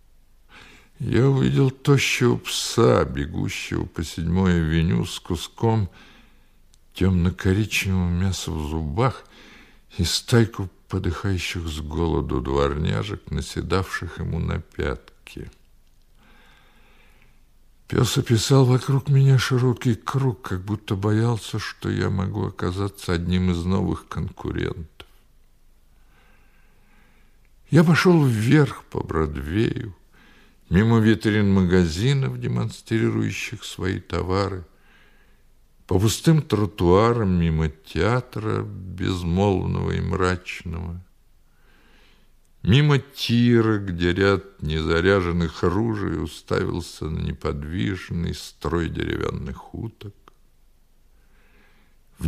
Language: Russian